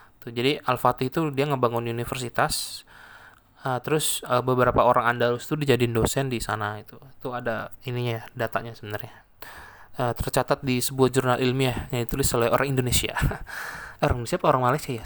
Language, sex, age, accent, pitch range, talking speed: English, male, 20-39, Indonesian, 120-135 Hz, 145 wpm